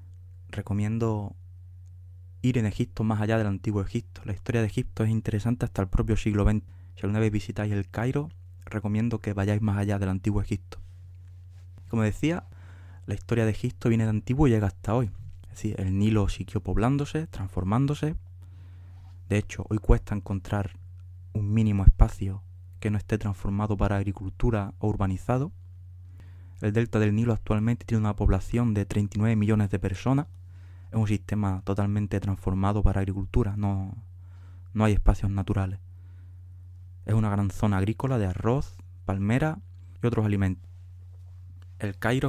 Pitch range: 90-110 Hz